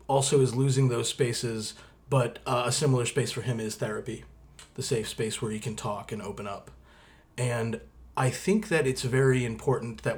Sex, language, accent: male, English, American